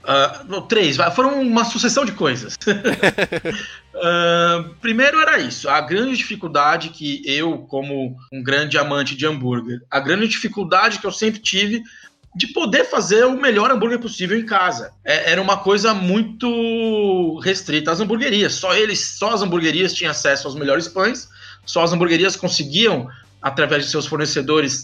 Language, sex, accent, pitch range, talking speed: Portuguese, male, Brazilian, 150-215 Hz, 155 wpm